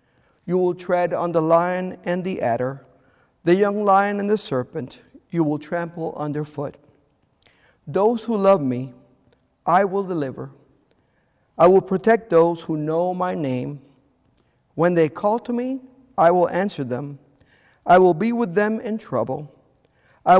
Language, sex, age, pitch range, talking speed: English, male, 50-69, 135-185 Hz, 150 wpm